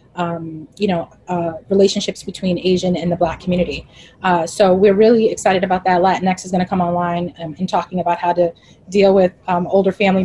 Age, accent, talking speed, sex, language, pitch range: 30-49, American, 205 wpm, female, English, 175-195 Hz